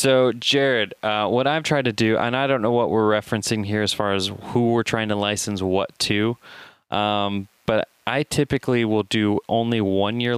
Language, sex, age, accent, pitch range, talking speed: English, male, 20-39, American, 95-115 Hz, 195 wpm